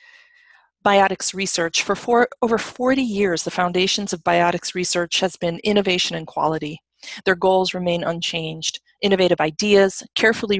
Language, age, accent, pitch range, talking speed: English, 30-49, American, 170-195 Hz, 130 wpm